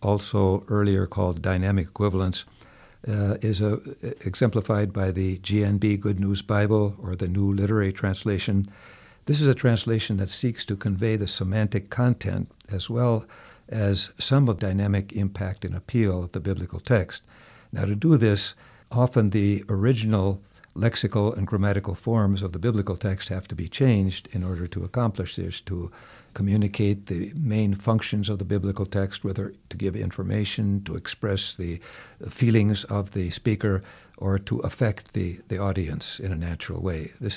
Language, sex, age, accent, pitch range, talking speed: English, male, 60-79, American, 95-110 Hz, 160 wpm